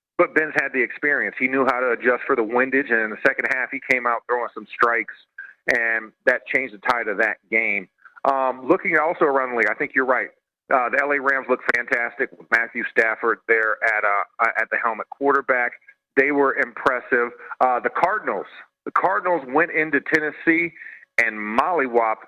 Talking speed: 190 wpm